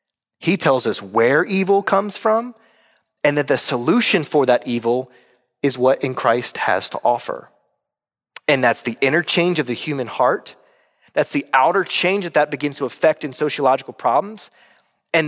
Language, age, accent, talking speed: English, 30-49, American, 165 wpm